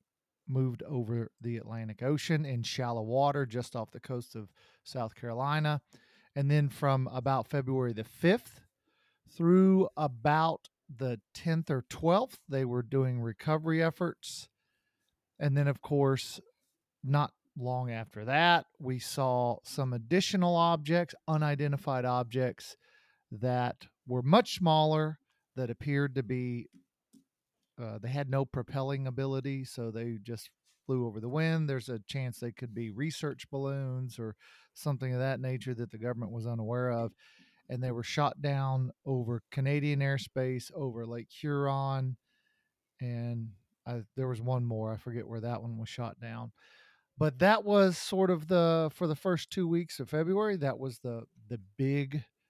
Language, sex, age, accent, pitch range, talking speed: English, male, 40-59, American, 120-150 Hz, 150 wpm